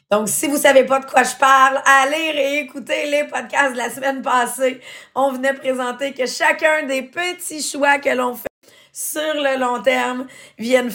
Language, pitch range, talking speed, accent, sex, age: English, 215-270 Hz, 185 wpm, Canadian, female, 30-49